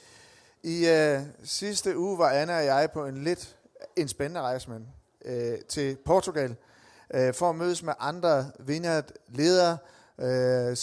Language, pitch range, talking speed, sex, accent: Danish, 135-175 Hz, 140 wpm, male, native